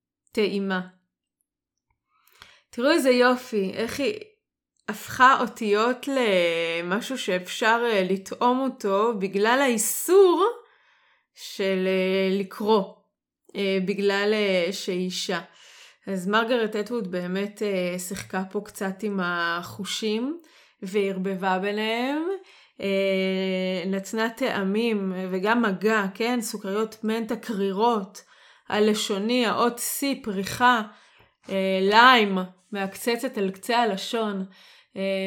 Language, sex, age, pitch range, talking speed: Hebrew, female, 20-39, 195-250 Hz, 85 wpm